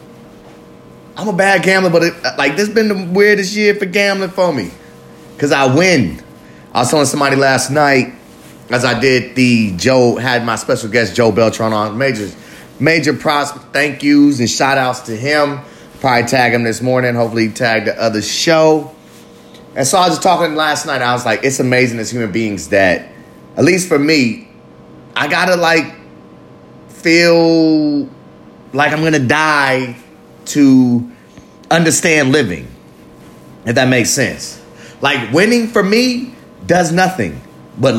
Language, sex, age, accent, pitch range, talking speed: English, male, 30-49, American, 125-175 Hz, 160 wpm